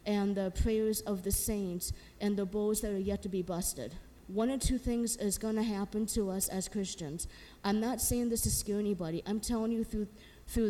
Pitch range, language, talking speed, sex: 210-255 Hz, English, 215 wpm, female